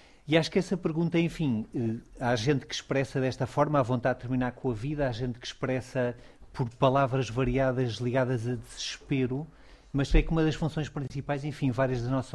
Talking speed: 195 wpm